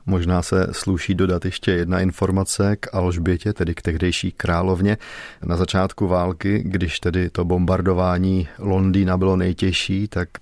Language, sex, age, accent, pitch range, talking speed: Czech, male, 30-49, native, 95-105 Hz, 140 wpm